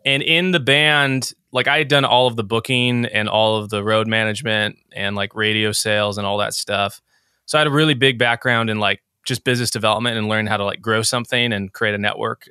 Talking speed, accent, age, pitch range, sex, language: 235 wpm, American, 20-39, 110-130 Hz, male, English